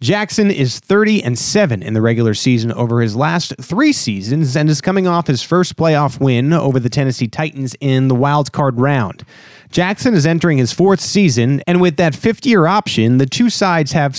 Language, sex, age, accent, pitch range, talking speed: English, male, 30-49, American, 120-170 Hz, 195 wpm